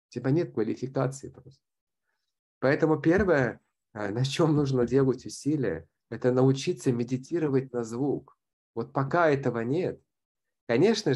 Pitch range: 115-140 Hz